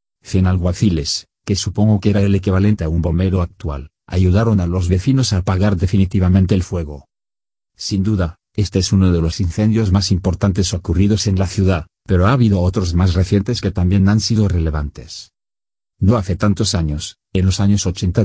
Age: 40-59